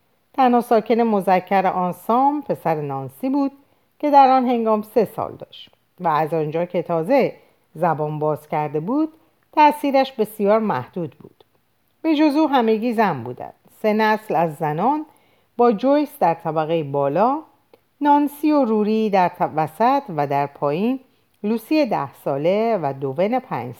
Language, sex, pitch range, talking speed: Persian, female, 150-245 Hz, 140 wpm